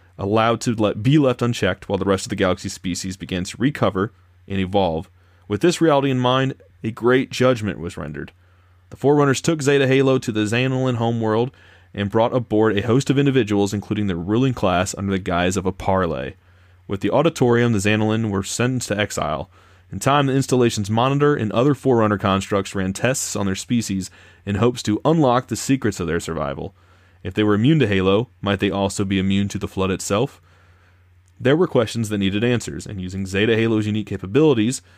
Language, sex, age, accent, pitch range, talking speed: English, male, 30-49, American, 95-120 Hz, 195 wpm